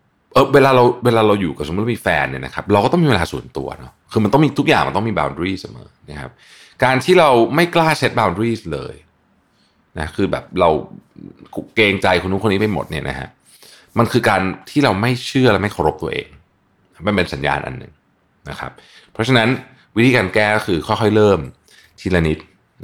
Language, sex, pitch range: Thai, male, 85-125 Hz